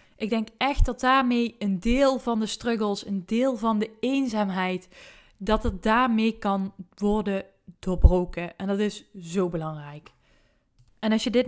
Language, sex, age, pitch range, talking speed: Dutch, female, 20-39, 185-220 Hz, 155 wpm